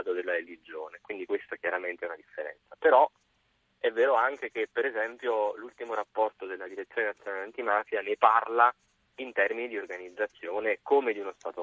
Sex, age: male, 30-49